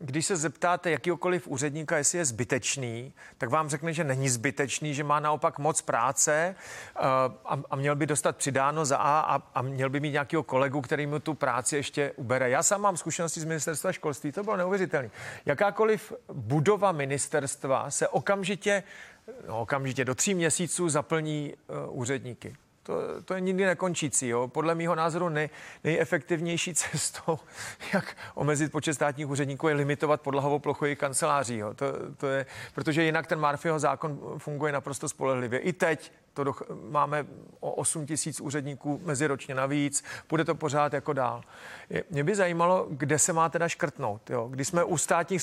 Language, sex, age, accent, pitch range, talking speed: Czech, male, 40-59, native, 140-170 Hz, 160 wpm